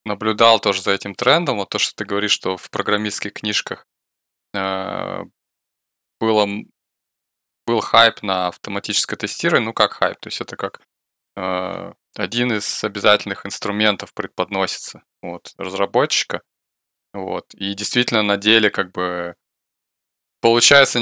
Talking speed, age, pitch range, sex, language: 125 wpm, 20-39, 95-110 Hz, male, Russian